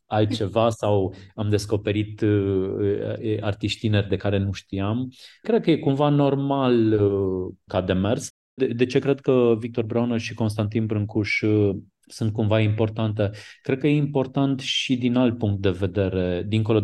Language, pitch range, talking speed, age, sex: Romanian, 105-120 Hz, 160 wpm, 30-49, male